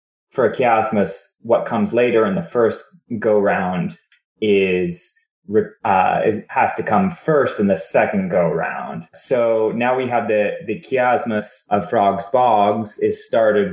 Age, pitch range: 20-39, 100-130 Hz